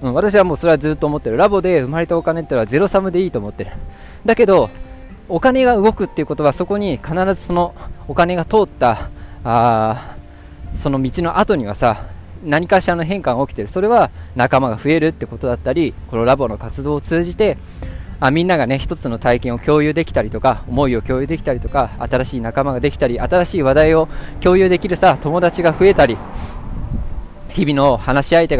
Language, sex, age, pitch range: Japanese, male, 20-39, 110-165 Hz